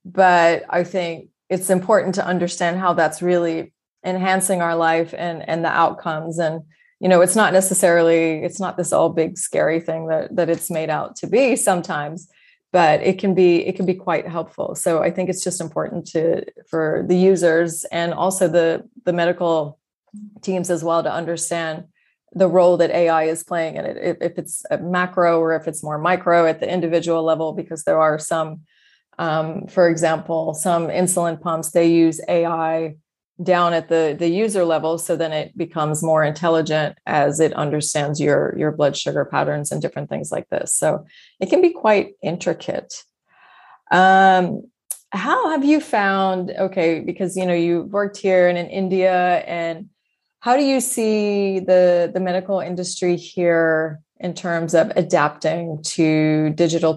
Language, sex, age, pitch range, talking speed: English, female, 20-39, 160-185 Hz, 170 wpm